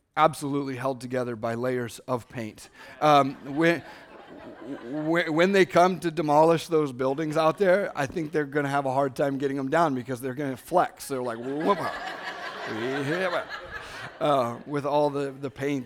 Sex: male